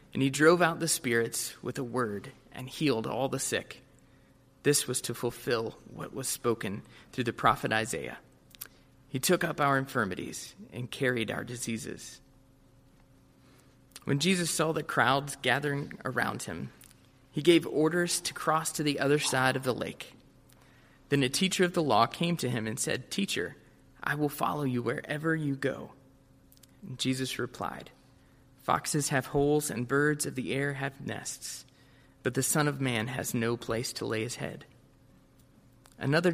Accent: American